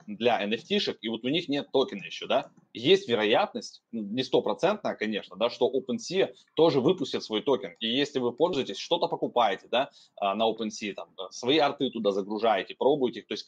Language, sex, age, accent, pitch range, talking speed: Russian, male, 20-39, native, 105-130 Hz, 180 wpm